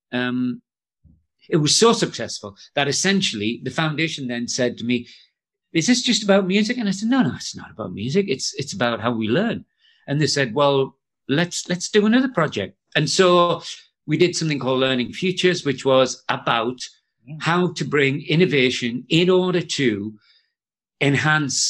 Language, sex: English, male